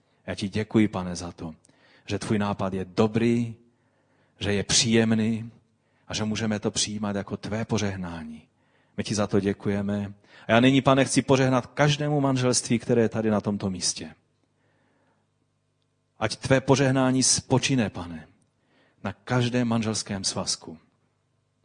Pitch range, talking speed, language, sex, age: 100-120 Hz, 140 wpm, Czech, male, 40-59